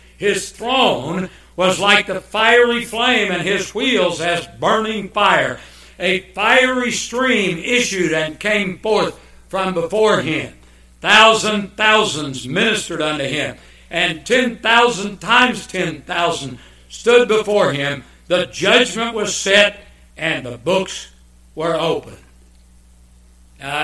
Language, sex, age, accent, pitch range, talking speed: English, male, 60-79, American, 125-200 Hz, 115 wpm